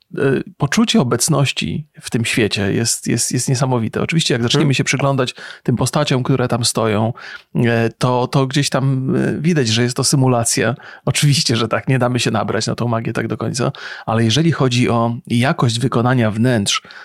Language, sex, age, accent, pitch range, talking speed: Polish, male, 30-49, native, 120-145 Hz, 170 wpm